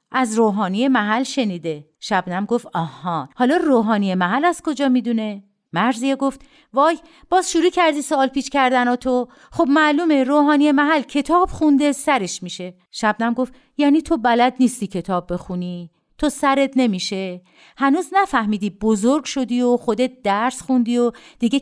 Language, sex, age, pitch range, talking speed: Persian, female, 50-69, 195-285 Hz, 145 wpm